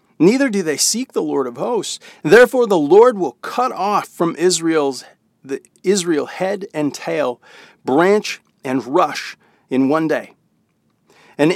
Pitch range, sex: 140-190 Hz, male